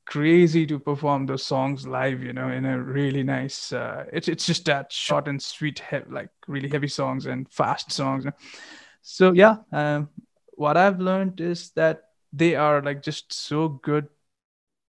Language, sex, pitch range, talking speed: English, male, 145-175 Hz, 170 wpm